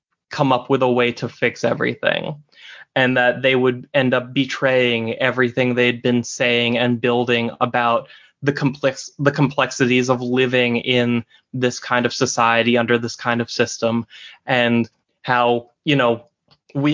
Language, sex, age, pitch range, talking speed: English, male, 20-39, 125-155 Hz, 150 wpm